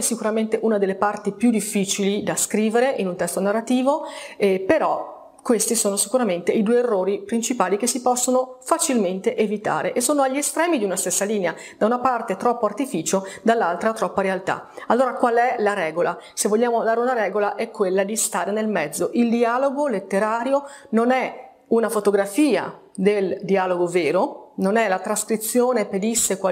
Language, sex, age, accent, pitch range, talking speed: Italian, female, 30-49, native, 200-255 Hz, 165 wpm